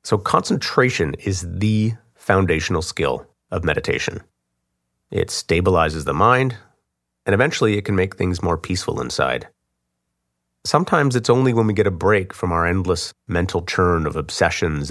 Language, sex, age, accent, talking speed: English, male, 30-49, American, 145 wpm